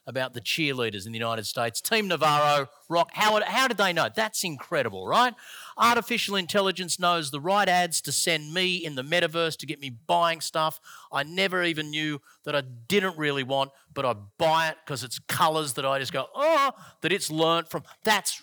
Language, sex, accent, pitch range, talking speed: English, male, Australian, 140-180 Hz, 200 wpm